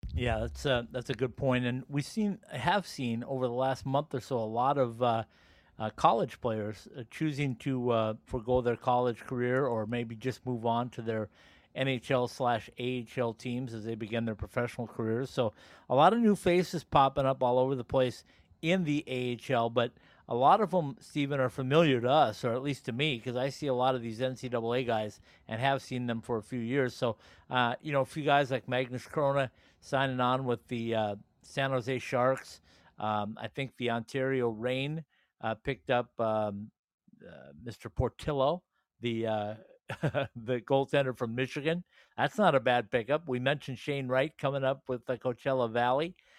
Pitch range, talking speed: 115-135 Hz, 195 wpm